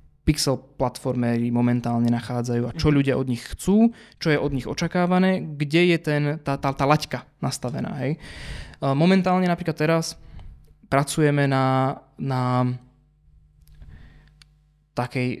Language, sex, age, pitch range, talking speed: Slovak, male, 20-39, 125-150 Hz, 120 wpm